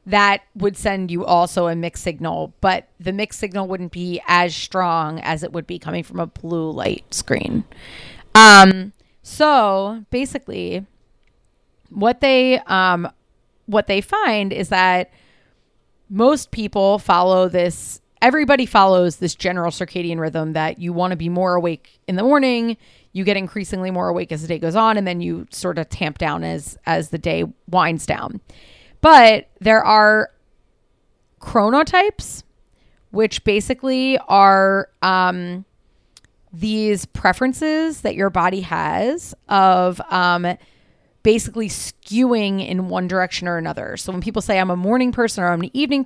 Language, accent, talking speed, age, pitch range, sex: English, American, 150 wpm, 30-49, 175-225 Hz, female